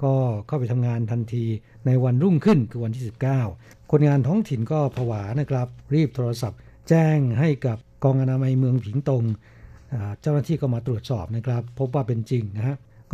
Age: 60-79